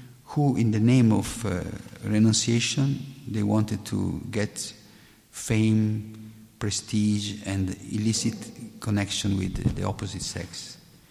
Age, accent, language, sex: 50-69, native, Italian, male